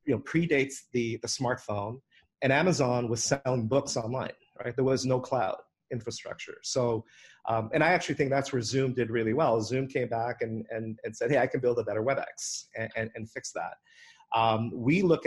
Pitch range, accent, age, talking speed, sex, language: 110-130 Hz, American, 40-59, 205 wpm, male, English